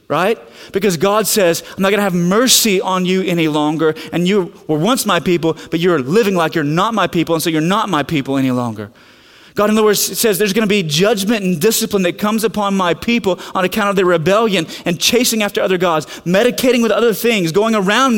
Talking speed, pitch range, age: 230 wpm, 160-210 Hz, 30-49